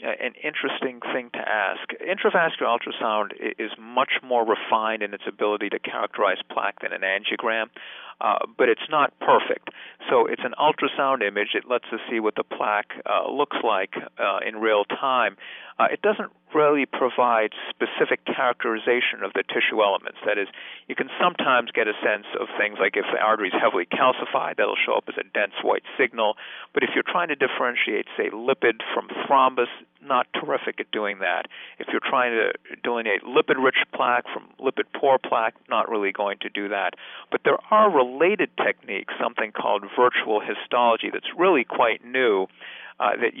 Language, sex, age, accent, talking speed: English, male, 50-69, American, 175 wpm